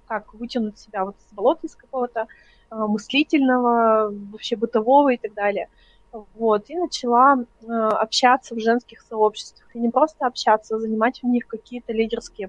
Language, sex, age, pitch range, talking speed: Russian, female, 20-39, 215-250 Hz, 160 wpm